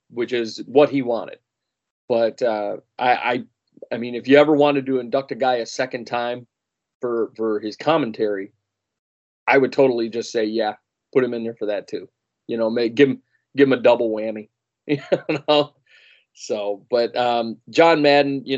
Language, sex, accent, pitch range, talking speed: English, male, American, 110-135 Hz, 185 wpm